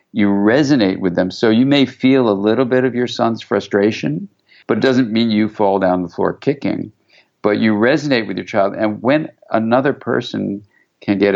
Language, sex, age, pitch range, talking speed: English, male, 50-69, 95-115 Hz, 195 wpm